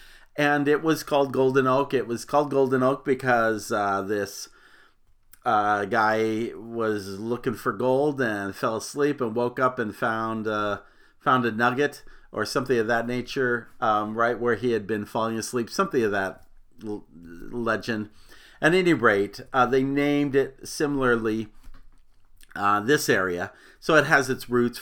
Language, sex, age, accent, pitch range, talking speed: English, male, 50-69, American, 110-160 Hz, 160 wpm